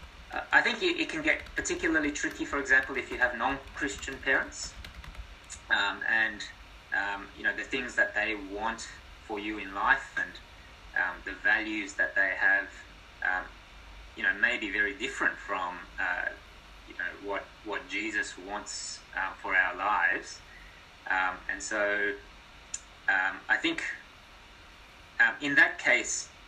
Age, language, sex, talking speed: 20-39, English, male, 145 wpm